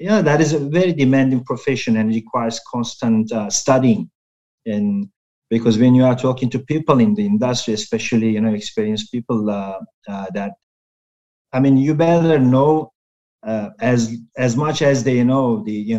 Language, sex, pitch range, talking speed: English, male, 115-135 Hz, 170 wpm